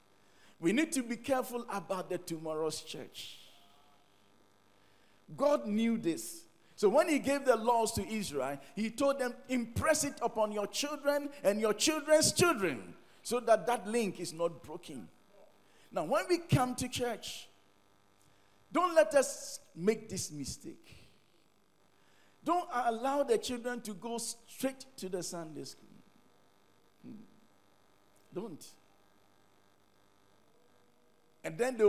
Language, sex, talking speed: English, male, 125 wpm